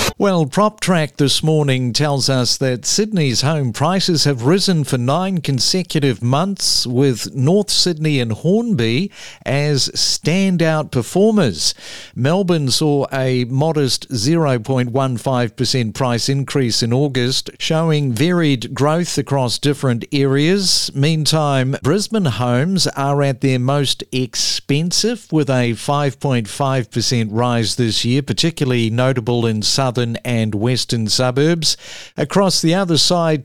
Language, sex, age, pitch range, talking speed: English, male, 50-69, 125-165 Hz, 115 wpm